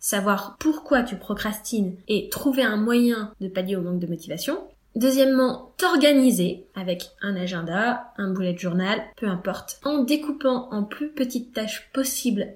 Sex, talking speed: female, 155 wpm